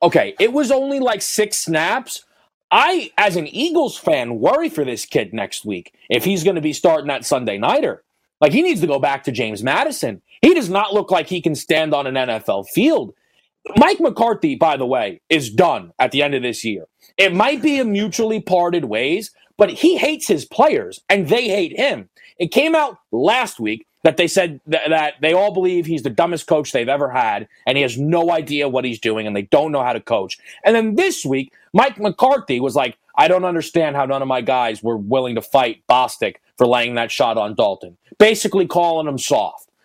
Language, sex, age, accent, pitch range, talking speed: English, male, 30-49, American, 140-230 Hz, 215 wpm